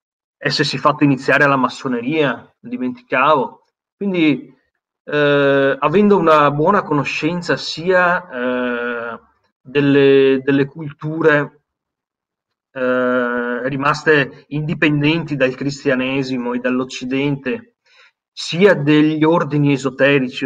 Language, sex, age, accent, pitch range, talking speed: Italian, male, 30-49, native, 130-175 Hz, 85 wpm